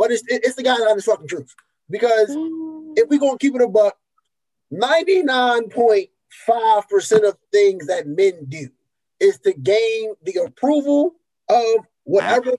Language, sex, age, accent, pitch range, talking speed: English, male, 20-39, American, 200-325 Hz, 155 wpm